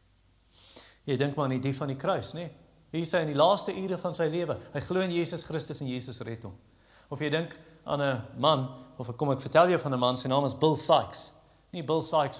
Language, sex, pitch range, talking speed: English, male, 135-185 Hz, 235 wpm